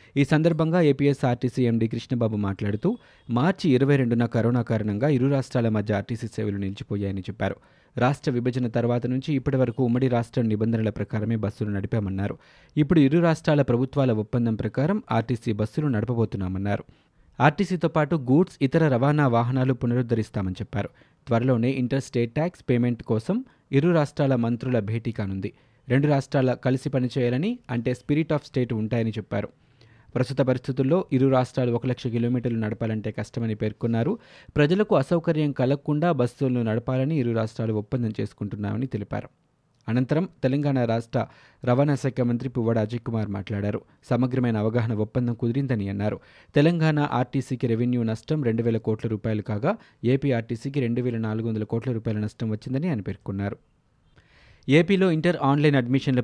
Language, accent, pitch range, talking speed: Telugu, native, 110-140 Hz, 130 wpm